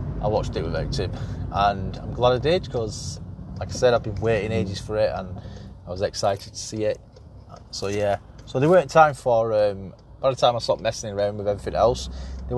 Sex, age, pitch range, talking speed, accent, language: male, 20-39, 105-135 Hz, 220 wpm, British, English